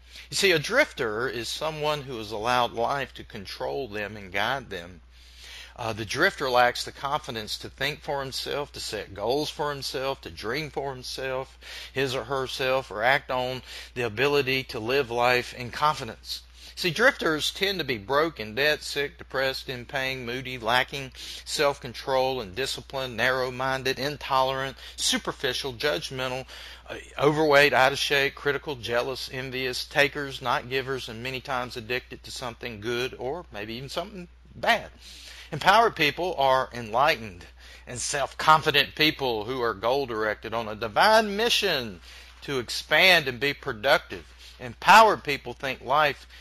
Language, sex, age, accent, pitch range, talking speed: English, male, 40-59, American, 120-150 Hz, 145 wpm